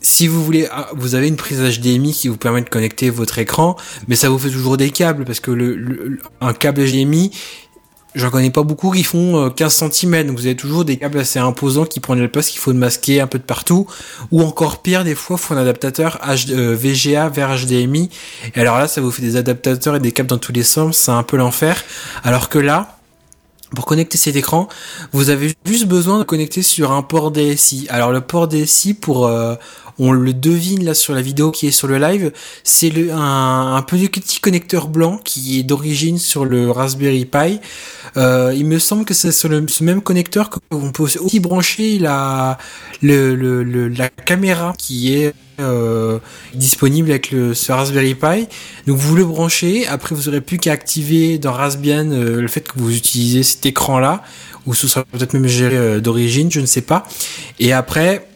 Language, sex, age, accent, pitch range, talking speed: French, male, 20-39, French, 130-160 Hz, 210 wpm